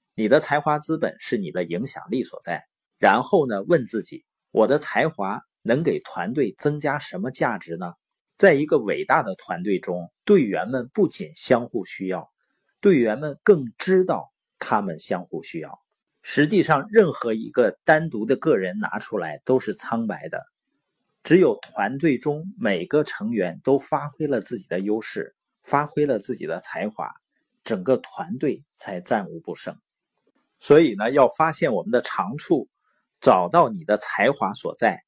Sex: male